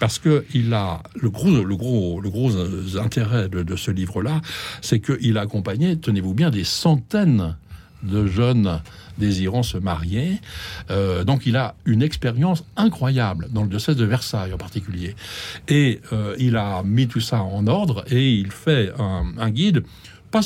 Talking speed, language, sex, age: 175 wpm, French, male, 60-79